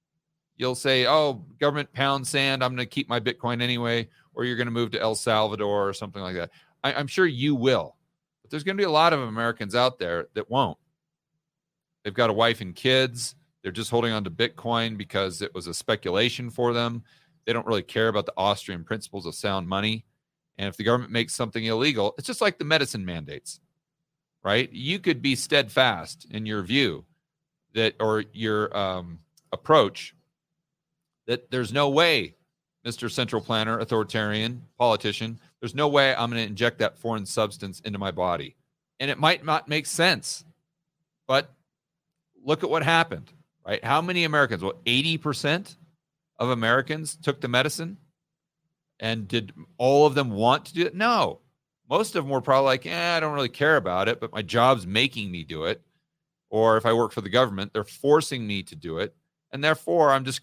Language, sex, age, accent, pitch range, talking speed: English, male, 40-59, American, 115-160 Hz, 190 wpm